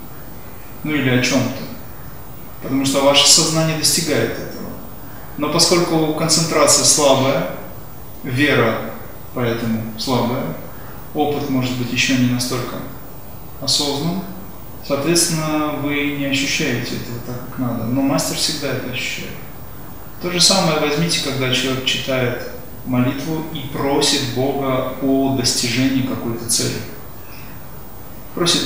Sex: male